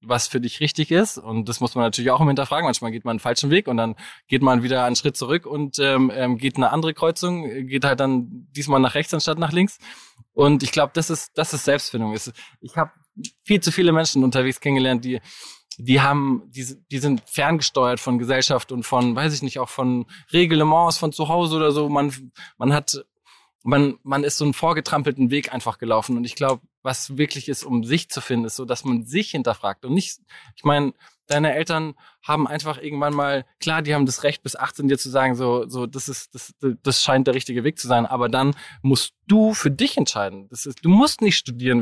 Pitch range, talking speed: 125-155 Hz, 215 wpm